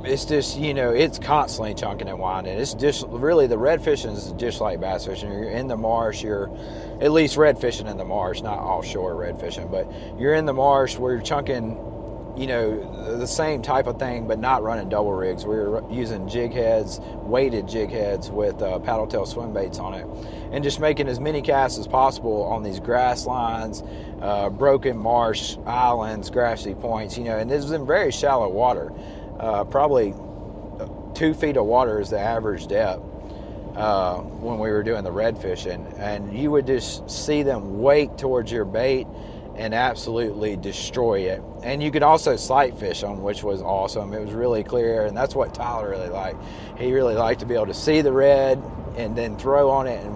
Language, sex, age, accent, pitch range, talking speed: English, male, 30-49, American, 105-130 Hz, 200 wpm